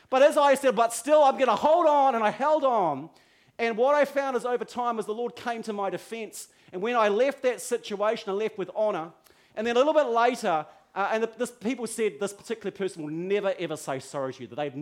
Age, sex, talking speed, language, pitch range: 40-59, male, 250 wpm, English, 155-235 Hz